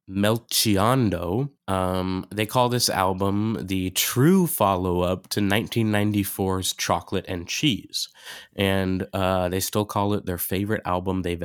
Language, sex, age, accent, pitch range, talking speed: English, male, 20-39, American, 90-110 Hz, 125 wpm